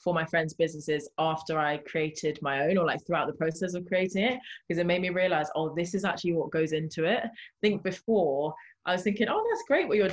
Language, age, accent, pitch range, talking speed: English, 20-39, British, 155-185 Hz, 245 wpm